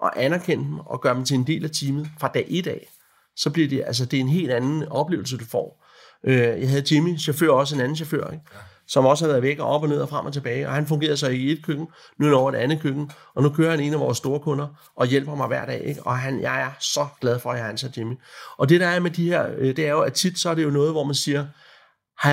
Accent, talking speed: Danish, 300 wpm